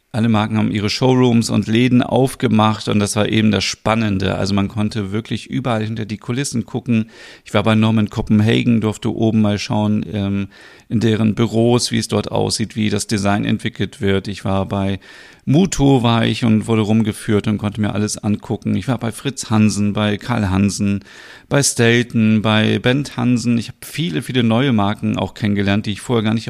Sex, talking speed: male, 190 wpm